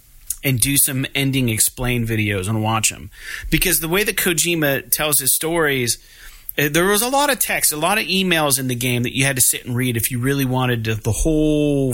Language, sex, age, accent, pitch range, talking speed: English, male, 30-49, American, 120-155 Hz, 215 wpm